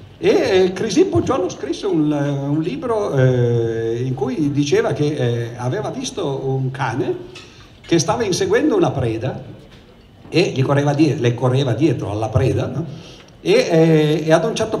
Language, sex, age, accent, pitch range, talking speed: Italian, male, 50-69, native, 125-165 Hz, 160 wpm